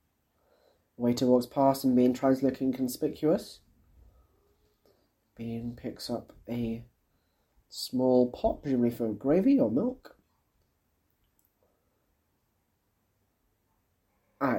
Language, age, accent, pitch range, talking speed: English, 30-49, British, 100-140 Hz, 80 wpm